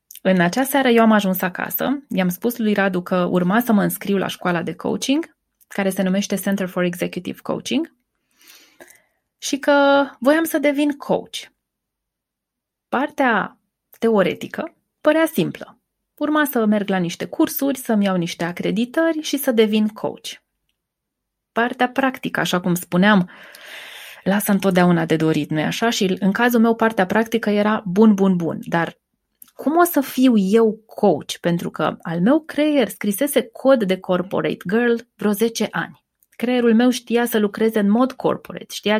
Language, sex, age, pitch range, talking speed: Romanian, female, 20-39, 190-255 Hz, 155 wpm